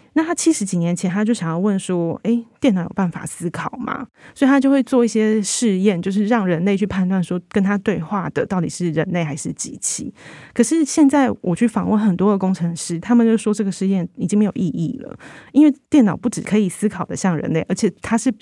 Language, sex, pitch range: Chinese, female, 175-225 Hz